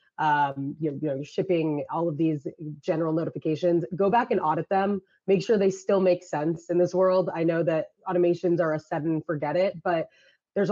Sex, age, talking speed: female, 20-39, 195 wpm